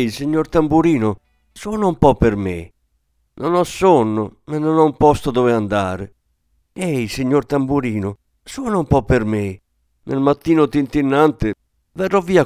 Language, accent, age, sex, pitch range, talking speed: Italian, native, 50-69, male, 95-150 Hz, 150 wpm